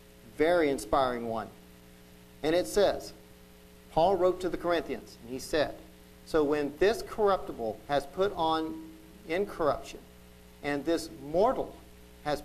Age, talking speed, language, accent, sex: 50-69, 125 wpm, English, American, male